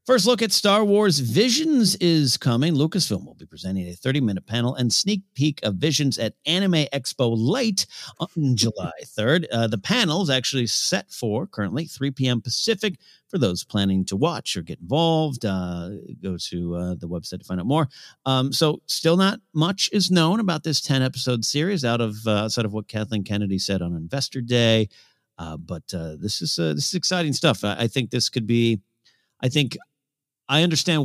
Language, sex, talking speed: English, male, 190 wpm